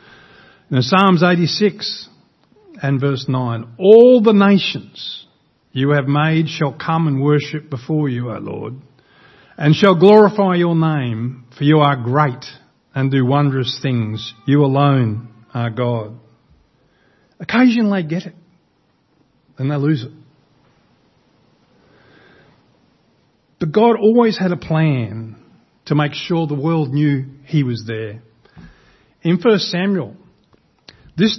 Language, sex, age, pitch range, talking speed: English, male, 50-69, 130-175 Hz, 120 wpm